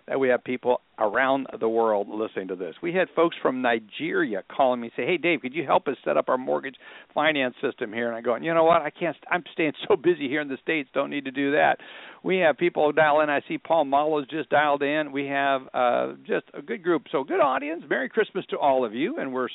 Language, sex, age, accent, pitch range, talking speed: English, male, 60-79, American, 120-155 Hz, 260 wpm